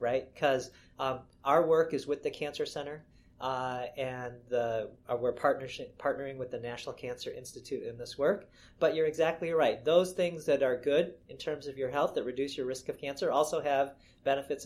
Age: 40-59